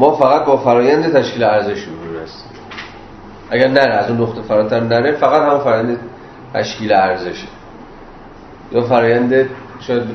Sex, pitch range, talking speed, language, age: male, 105-125 Hz, 130 wpm, Persian, 40-59